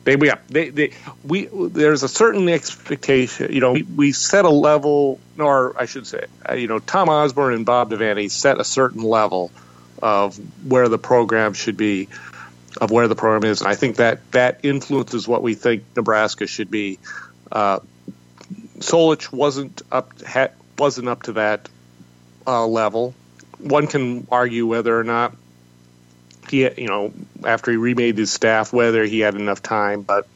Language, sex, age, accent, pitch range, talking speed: English, male, 40-59, American, 85-125 Hz, 165 wpm